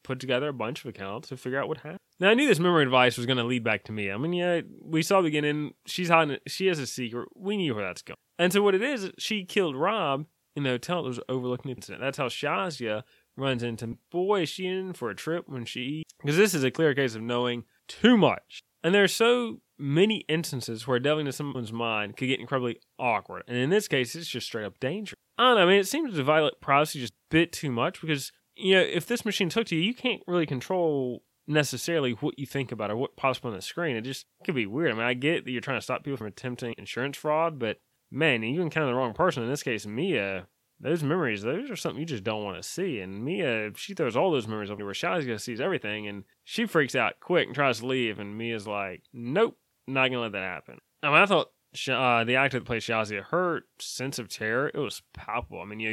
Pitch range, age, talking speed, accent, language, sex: 120-165 Hz, 20-39, 260 wpm, American, English, male